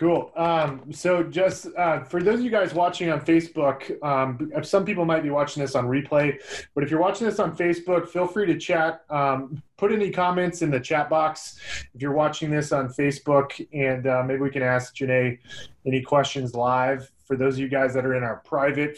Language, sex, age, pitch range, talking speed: English, male, 20-39, 130-165 Hz, 210 wpm